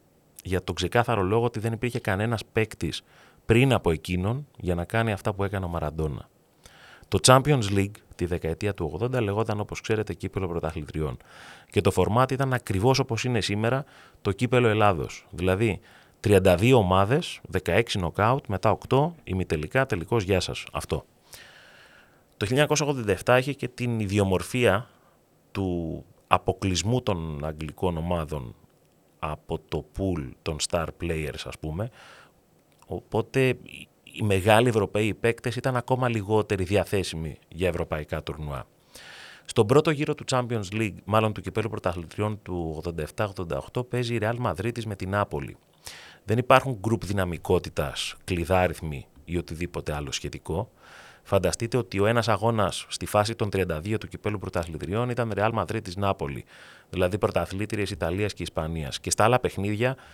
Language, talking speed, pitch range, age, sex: Greek, 140 wpm, 85-115 Hz, 30-49, male